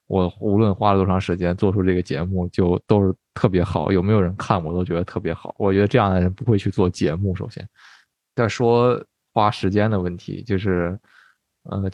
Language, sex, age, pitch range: Chinese, male, 20-39, 90-105 Hz